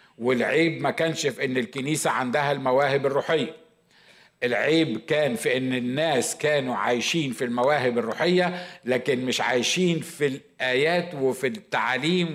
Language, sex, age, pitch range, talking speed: Arabic, male, 50-69, 125-165 Hz, 125 wpm